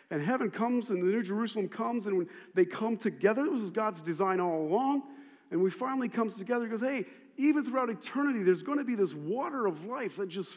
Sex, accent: male, American